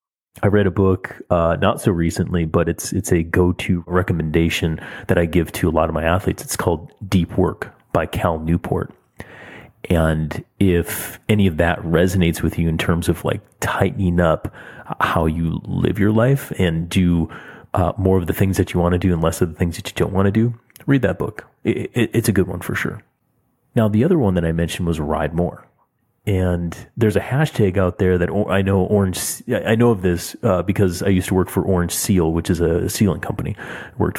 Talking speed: 215 wpm